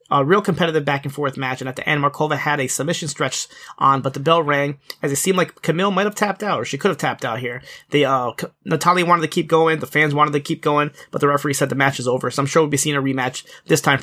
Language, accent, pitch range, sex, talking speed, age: English, American, 135-160 Hz, male, 280 wpm, 30-49